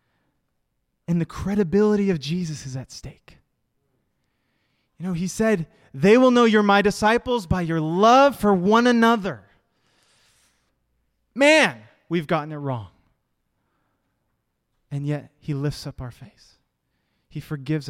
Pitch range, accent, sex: 140-220 Hz, American, male